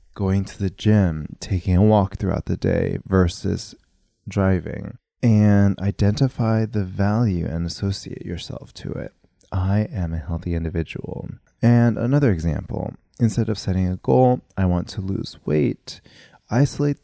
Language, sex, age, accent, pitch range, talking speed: English, male, 20-39, American, 90-110 Hz, 140 wpm